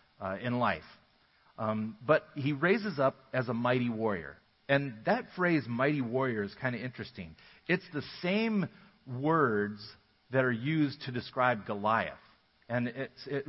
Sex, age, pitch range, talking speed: male, 40-59, 105-140 Hz, 145 wpm